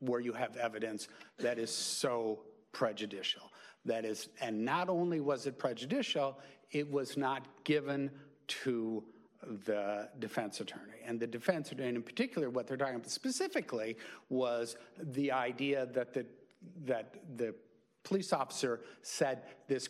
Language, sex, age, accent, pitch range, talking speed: English, male, 60-79, American, 120-155 Hz, 140 wpm